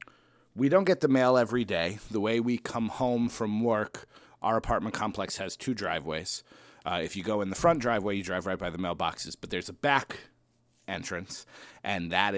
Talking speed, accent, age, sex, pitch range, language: 200 wpm, American, 30-49, male, 95-120 Hz, English